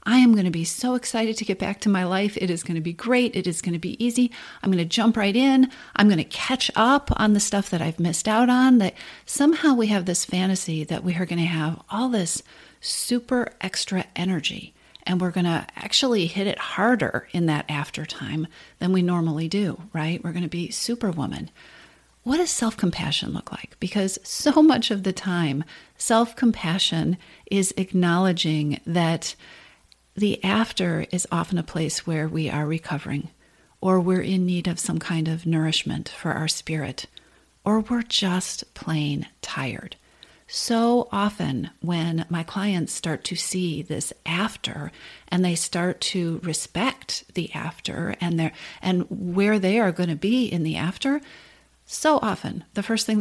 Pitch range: 165-220 Hz